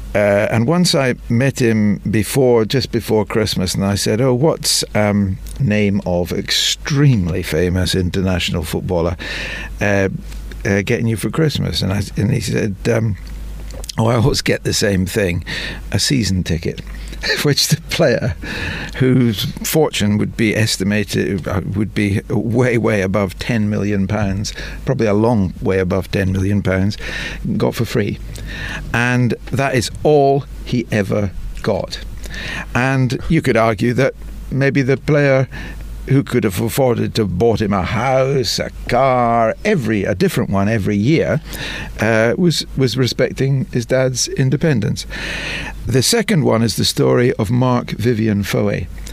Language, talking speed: English, 145 wpm